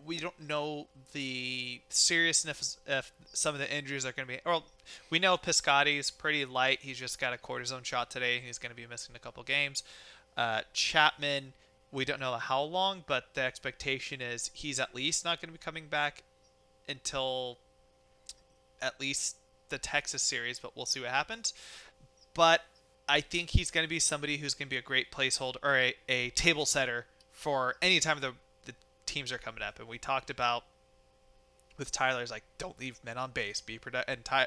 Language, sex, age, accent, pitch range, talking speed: English, male, 30-49, American, 125-145 Hz, 200 wpm